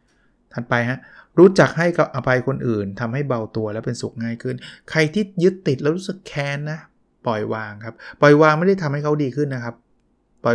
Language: Thai